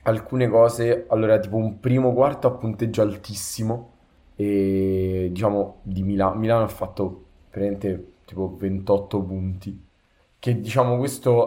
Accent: native